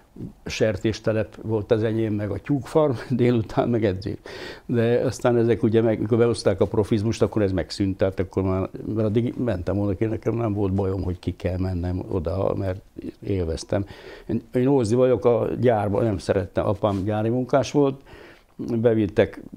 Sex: male